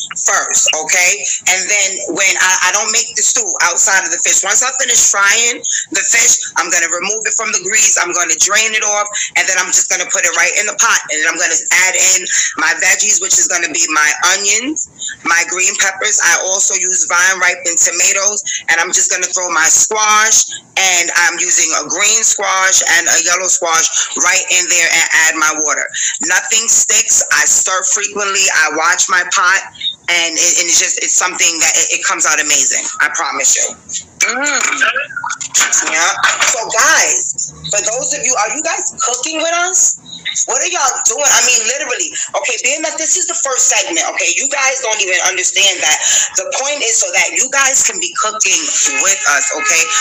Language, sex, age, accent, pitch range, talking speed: English, female, 20-39, American, 180-265 Hz, 205 wpm